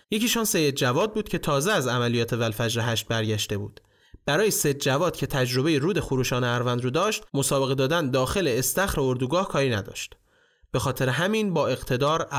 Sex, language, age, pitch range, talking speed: male, Persian, 30-49, 125-180 Hz, 170 wpm